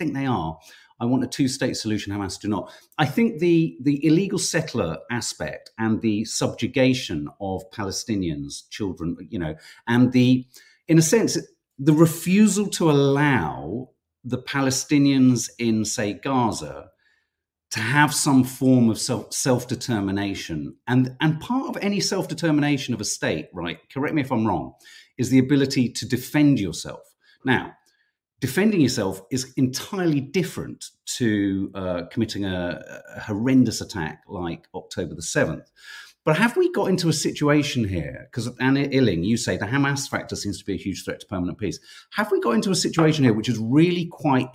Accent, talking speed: British, 165 wpm